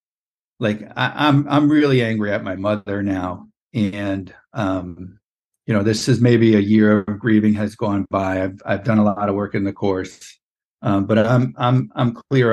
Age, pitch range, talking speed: 50-69, 100-125 Hz, 190 wpm